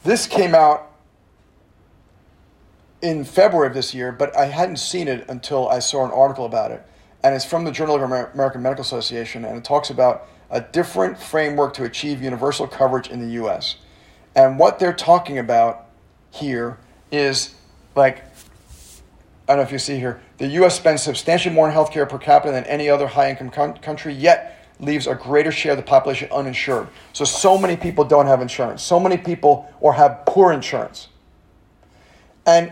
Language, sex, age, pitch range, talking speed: English, male, 40-59, 130-165 Hz, 180 wpm